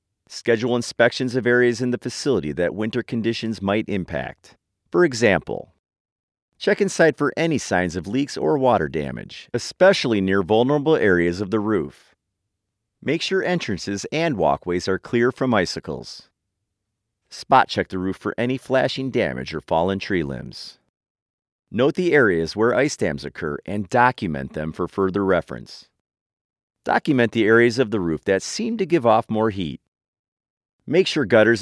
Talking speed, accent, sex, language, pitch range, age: 155 wpm, American, male, English, 95-130 Hz, 40-59